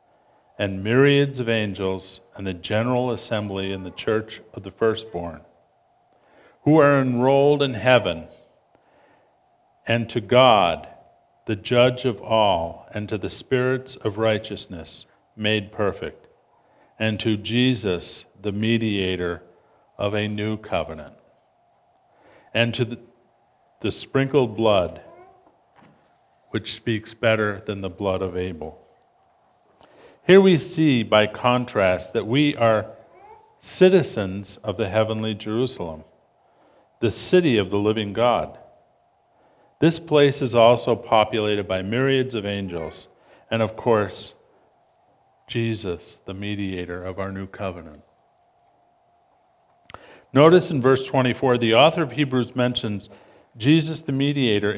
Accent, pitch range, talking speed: American, 100-125 Hz, 115 wpm